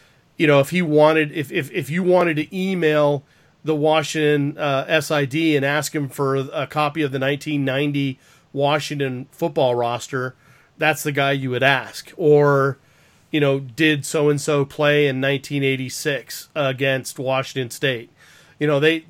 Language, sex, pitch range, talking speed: English, male, 140-160 Hz, 165 wpm